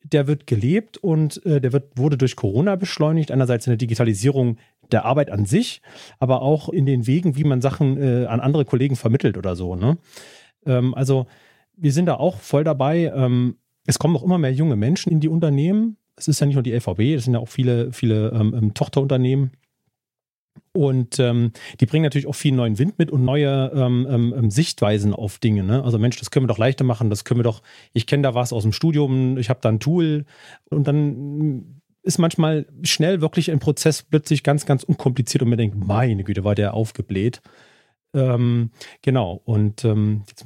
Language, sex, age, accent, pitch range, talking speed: German, male, 30-49, German, 120-145 Hz, 200 wpm